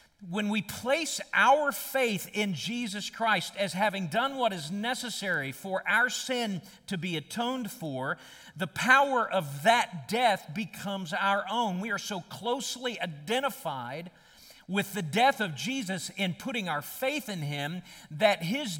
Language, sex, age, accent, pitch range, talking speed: English, male, 50-69, American, 185-245 Hz, 150 wpm